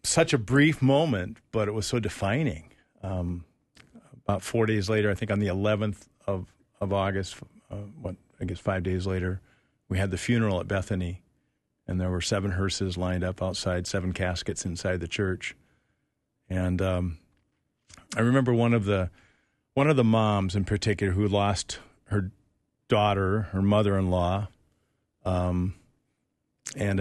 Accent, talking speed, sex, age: American, 155 wpm, male, 50-69